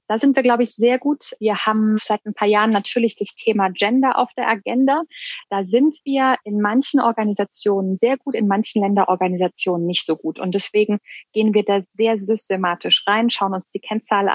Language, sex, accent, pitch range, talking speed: German, female, German, 185-235 Hz, 190 wpm